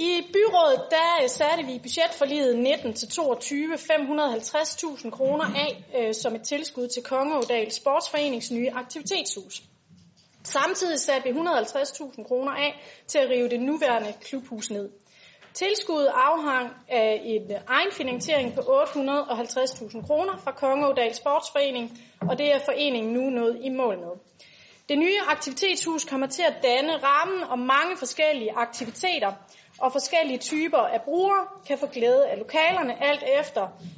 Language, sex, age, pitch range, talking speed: Danish, female, 30-49, 240-315 Hz, 135 wpm